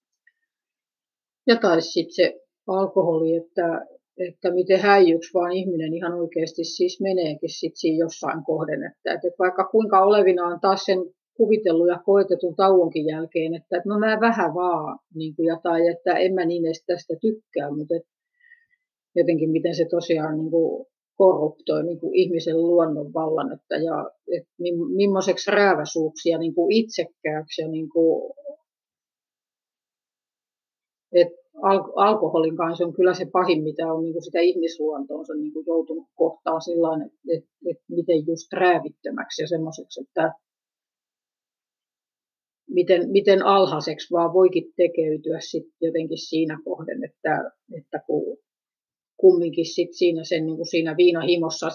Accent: native